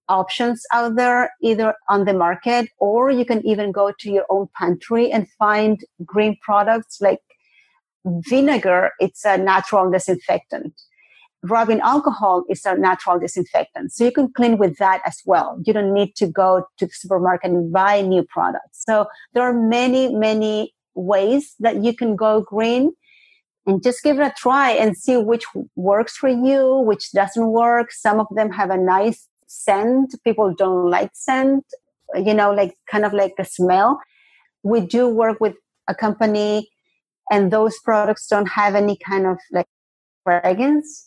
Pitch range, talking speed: 195-235 Hz, 165 wpm